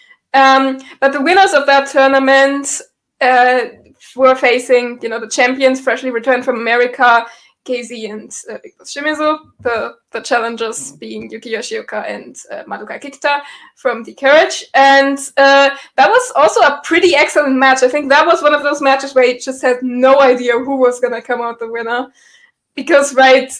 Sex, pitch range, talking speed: female, 245-280 Hz, 175 wpm